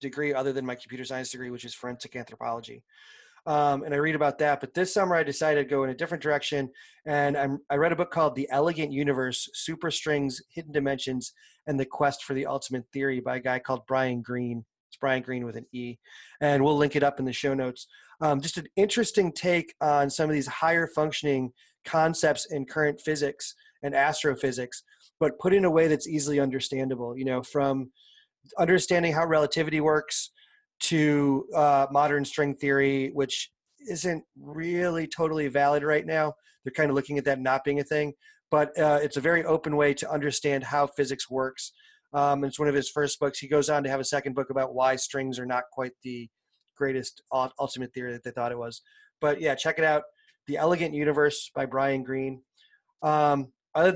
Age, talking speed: 30-49, 200 wpm